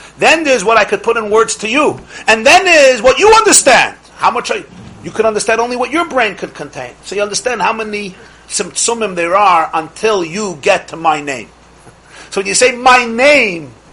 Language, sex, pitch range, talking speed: English, male, 140-220 Hz, 205 wpm